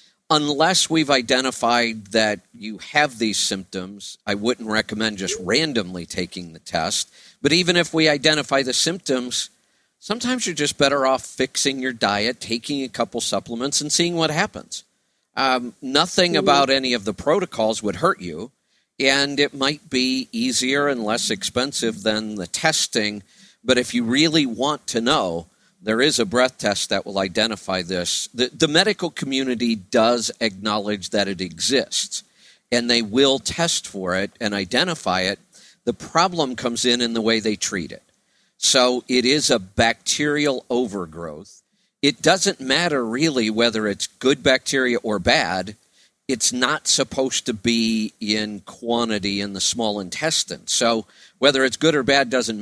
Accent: American